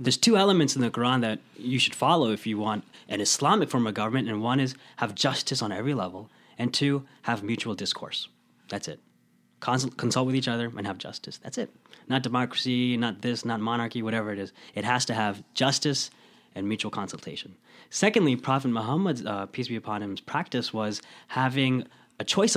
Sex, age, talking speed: male, 20-39, 190 wpm